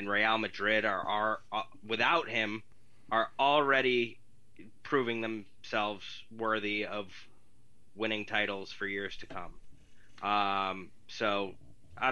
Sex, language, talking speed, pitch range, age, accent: male, English, 115 wpm, 100-115 Hz, 20-39, American